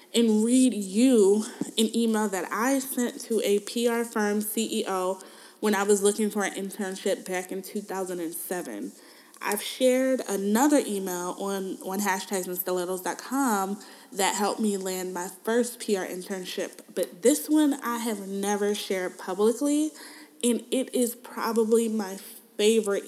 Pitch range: 195-235 Hz